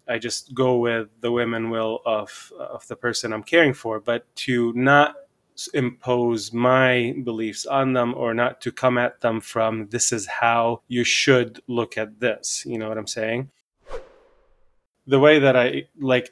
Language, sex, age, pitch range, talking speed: English, male, 20-39, 115-130 Hz, 175 wpm